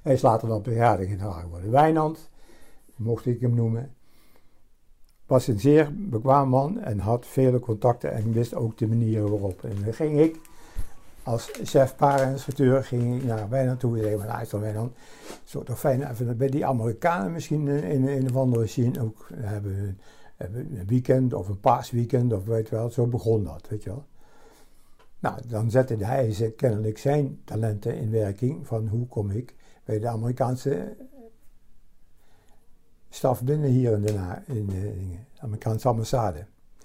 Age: 60-79